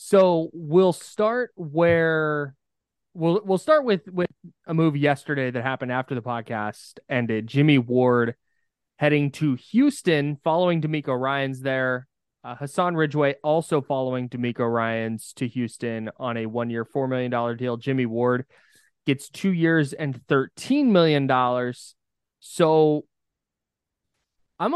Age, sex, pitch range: 20-39, male, 120-150 Hz